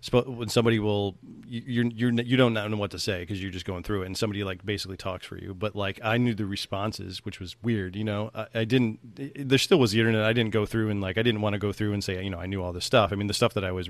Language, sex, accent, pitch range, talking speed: English, male, American, 95-110 Hz, 310 wpm